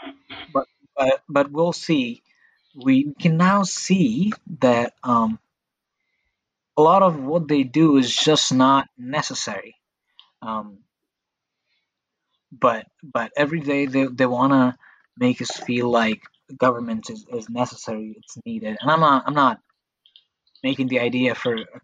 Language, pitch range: Hindi, 115-175 Hz